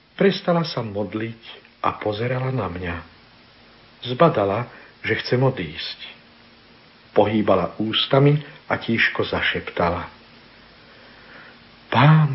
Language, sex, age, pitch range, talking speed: Slovak, male, 60-79, 105-130 Hz, 85 wpm